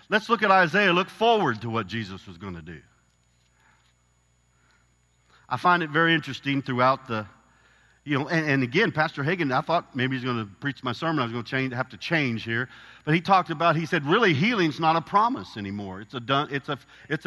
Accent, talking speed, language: American, 220 wpm, English